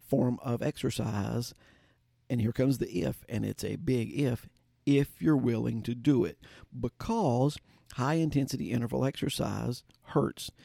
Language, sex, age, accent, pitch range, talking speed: English, male, 50-69, American, 115-135 Hz, 140 wpm